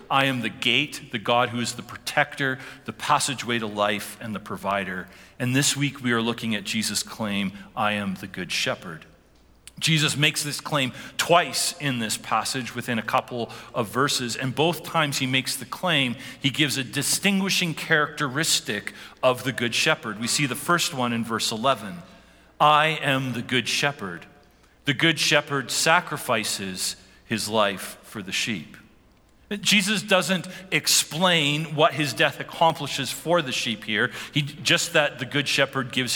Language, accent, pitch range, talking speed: English, American, 125-160 Hz, 165 wpm